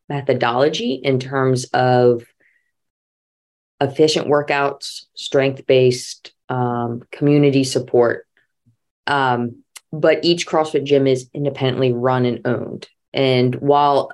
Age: 20-39